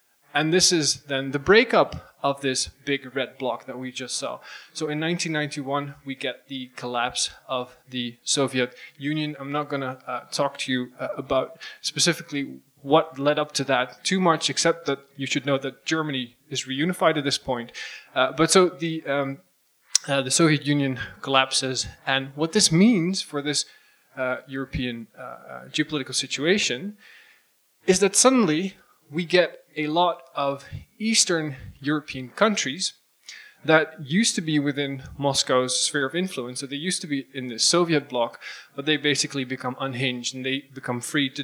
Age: 20-39